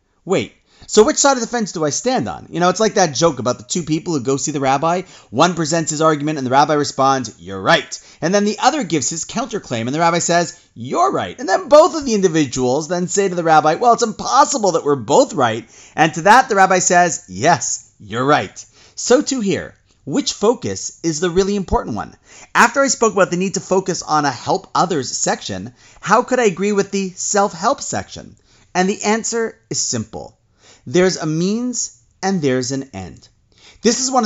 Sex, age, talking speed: male, 30-49, 215 wpm